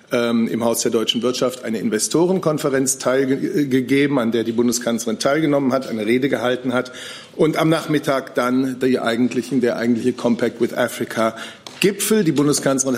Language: German